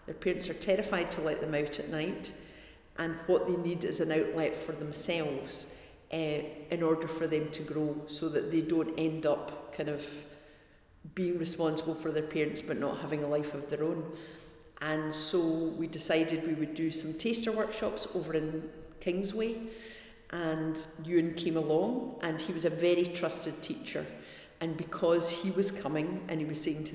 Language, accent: English, British